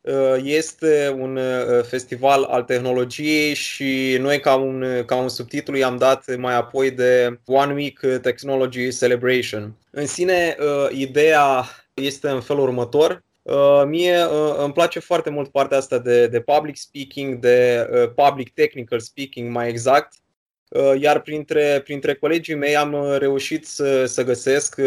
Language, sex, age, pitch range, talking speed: Romanian, male, 20-39, 130-150 Hz, 130 wpm